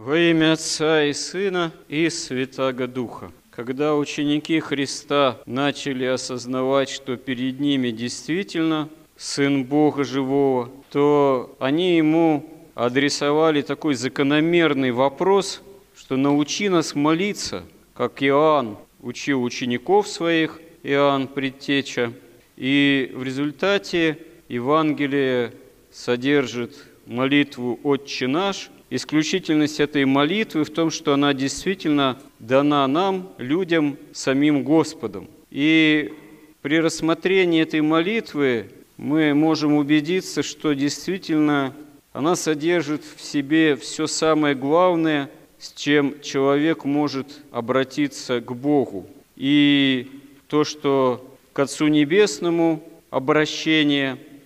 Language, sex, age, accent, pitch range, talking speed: Russian, male, 40-59, native, 135-155 Hz, 100 wpm